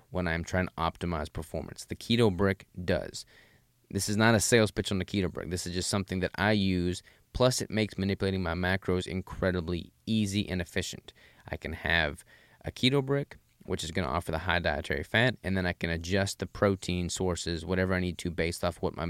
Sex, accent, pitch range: male, American, 85-105 Hz